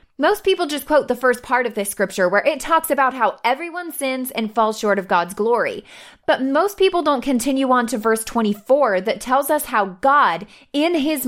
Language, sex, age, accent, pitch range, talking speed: English, female, 20-39, American, 220-290 Hz, 205 wpm